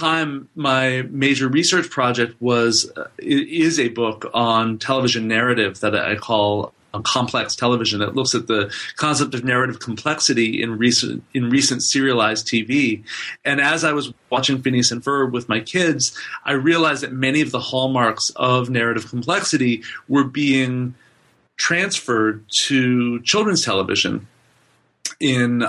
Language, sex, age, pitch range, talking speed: English, male, 40-59, 115-150 Hz, 145 wpm